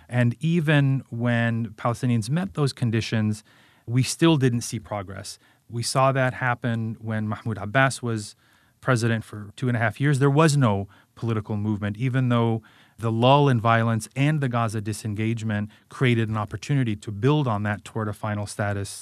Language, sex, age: English, male, 30-49